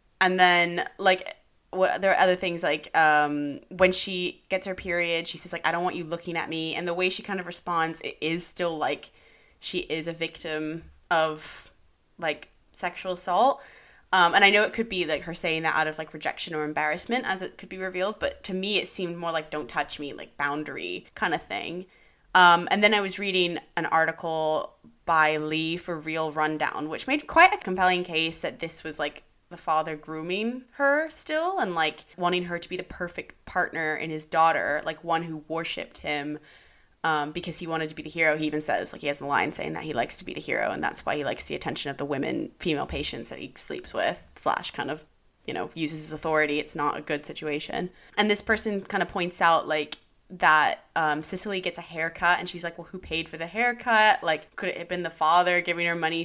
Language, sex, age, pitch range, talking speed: English, female, 20-39, 155-185 Hz, 225 wpm